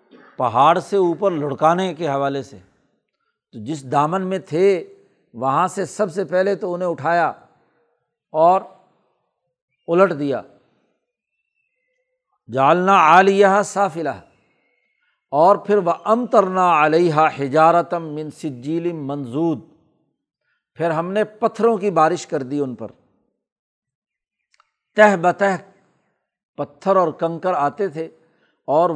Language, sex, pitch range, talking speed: Urdu, male, 150-195 Hz, 110 wpm